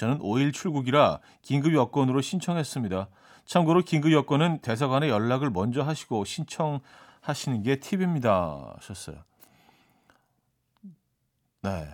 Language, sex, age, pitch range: Korean, male, 40-59, 110-155 Hz